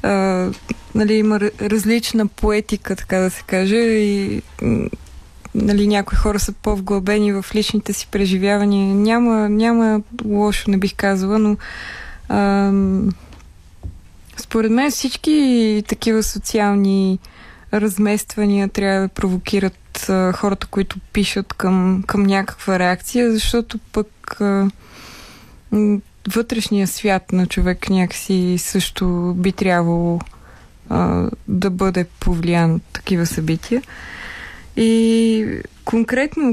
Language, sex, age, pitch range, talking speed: Bulgarian, female, 20-39, 190-220 Hz, 105 wpm